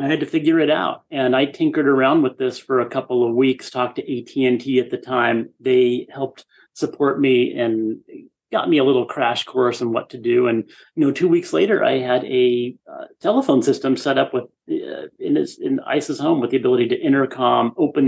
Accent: American